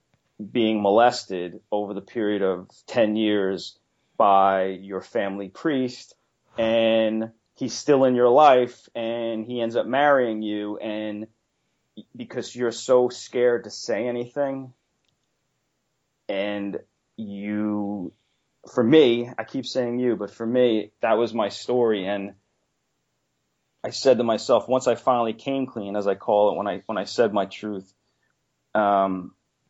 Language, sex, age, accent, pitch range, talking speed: English, male, 30-49, American, 95-120 Hz, 140 wpm